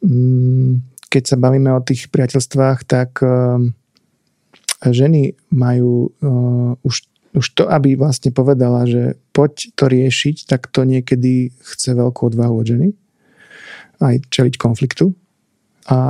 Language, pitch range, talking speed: Slovak, 115-135 Hz, 125 wpm